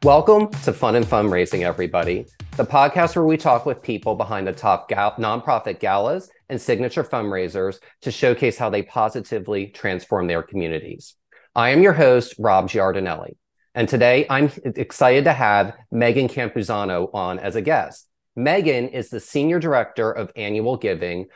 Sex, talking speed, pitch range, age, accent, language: male, 155 wpm, 105-135 Hz, 30-49, American, English